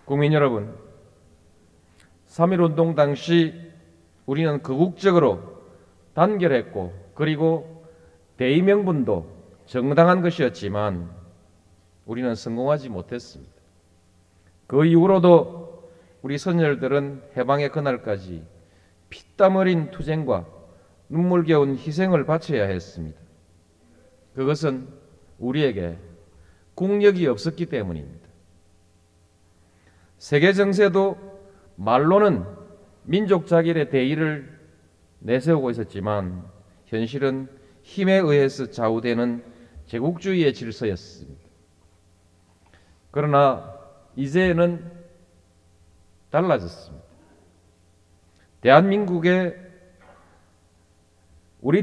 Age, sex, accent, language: 40-59, male, native, Korean